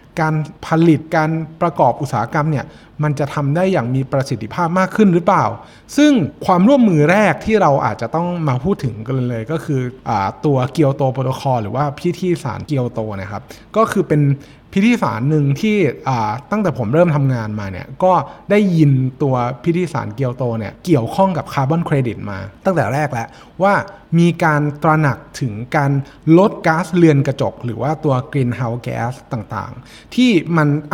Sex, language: male, Thai